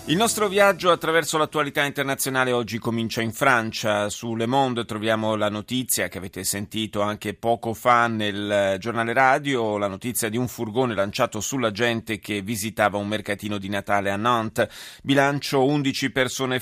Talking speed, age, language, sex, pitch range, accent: 160 wpm, 30-49, Italian, male, 110-135 Hz, native